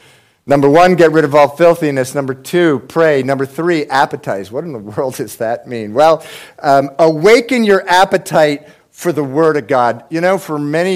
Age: 50-69